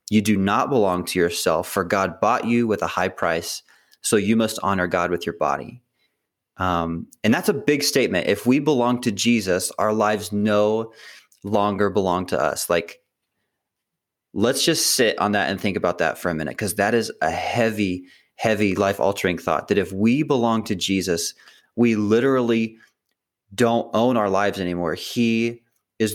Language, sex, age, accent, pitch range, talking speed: English, male, 30-49, American, 95-115 Hz, 175 wpm